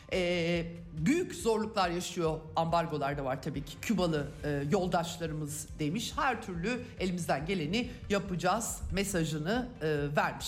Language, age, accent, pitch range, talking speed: Turkish, 50-69, native, 155-210 Hz, 120 wpm